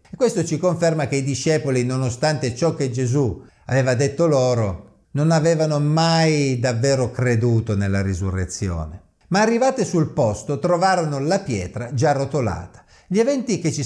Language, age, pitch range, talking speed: Italian, 50-69, 110-170 Hz, 145 wpm